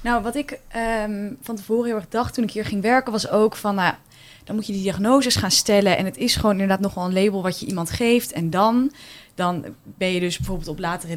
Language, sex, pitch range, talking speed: Dutch, female, 175-220 Hz, 245 wpm